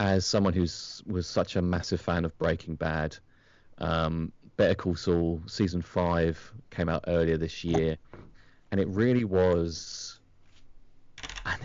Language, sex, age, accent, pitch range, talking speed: English, male, 30-49, British, 85-95 Hz, 140 wpm